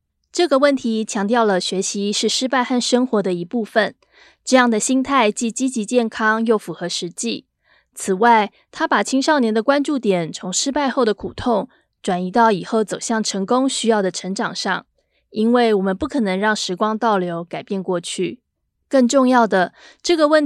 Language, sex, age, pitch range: Chinese, female, 20-39, 195-250 Hz